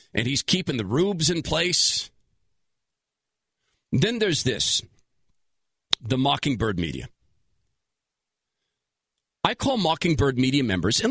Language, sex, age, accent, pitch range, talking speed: English, male, 40-59, American, 140-210 Hz, 105 wpm